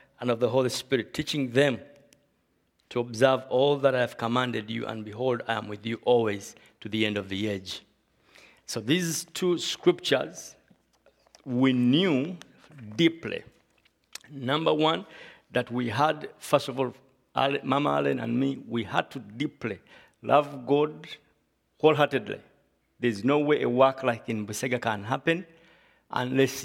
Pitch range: 115-145 Hz